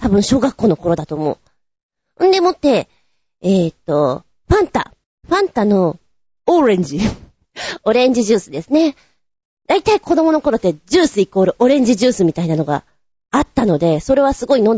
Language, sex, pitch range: Japanese, female, 190-310 Hz